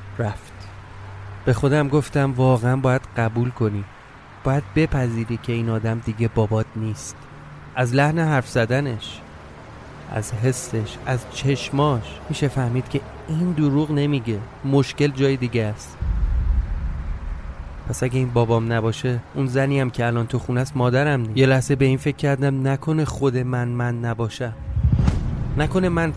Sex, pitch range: male, 105-140 Hz